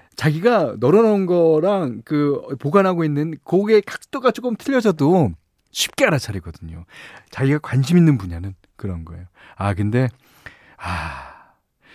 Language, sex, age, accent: Korean, male, 40-59, native